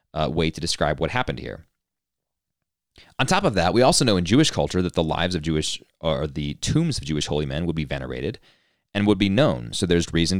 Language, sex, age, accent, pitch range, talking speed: English, male, 30-49, American, 80-105 Hz, 225 wpm